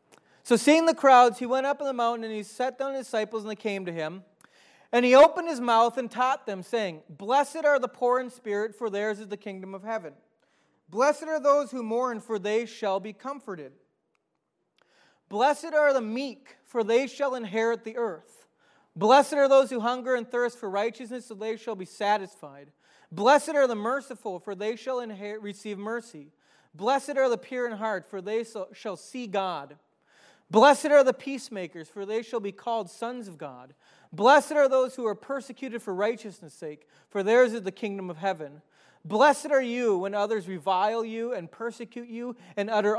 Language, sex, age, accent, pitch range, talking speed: English, male, 30-49, American, 200-255 Hz, 195 wpm